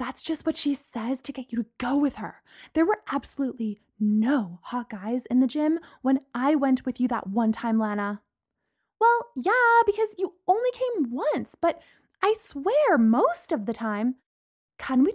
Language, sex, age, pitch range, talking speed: English, female, 20-39, 220-320 Hz, 180 wpm